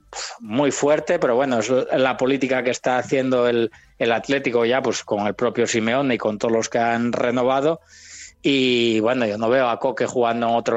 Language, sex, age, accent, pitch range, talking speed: Spanish, male, 20-39, Spanish, 115-145 Hz, 200 wpm